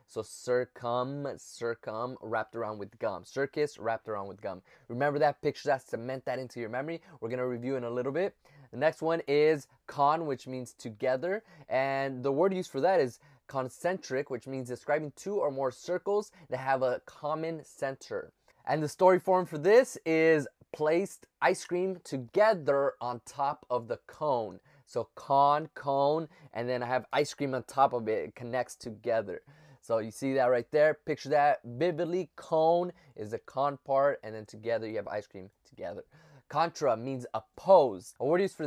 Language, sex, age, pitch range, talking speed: English, male, 20-39, 125-155 Hz, 185 wpm